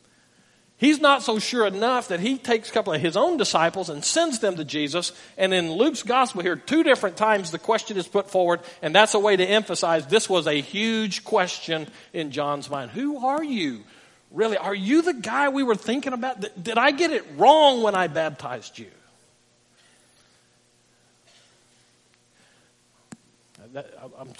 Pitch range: 155-220 Hz